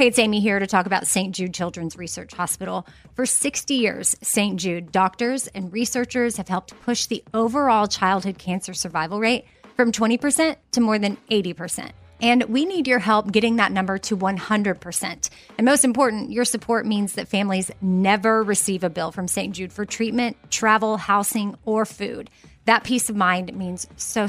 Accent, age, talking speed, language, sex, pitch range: American, 30-49, 190 wpm, English, female, 185-235 Hz